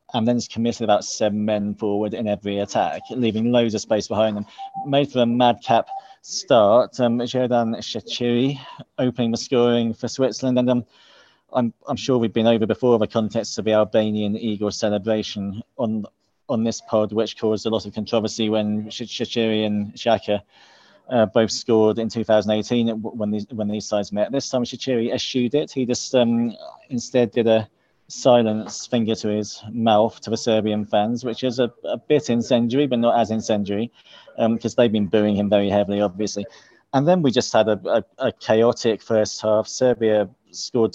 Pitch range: 105-120 Hz